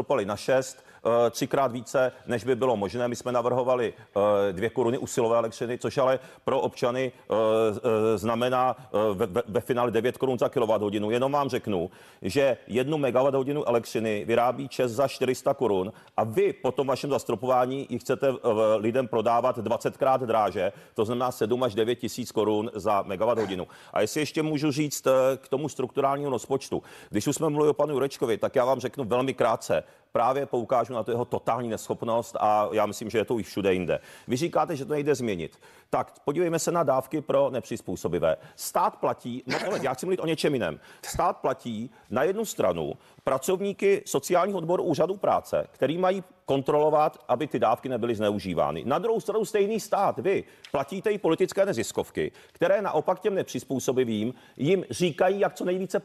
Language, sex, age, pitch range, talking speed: Czech, male, 40-59, 120-180 Hz, 170 wpm